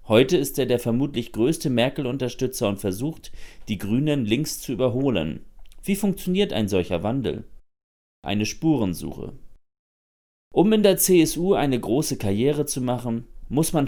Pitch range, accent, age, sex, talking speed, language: 105-135 Hz, German, 30-49, male, 140 wpm, German